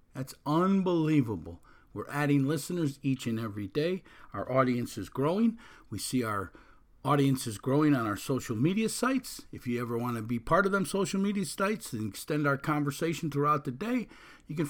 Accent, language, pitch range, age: American, English, 130-175 Hz, 50-69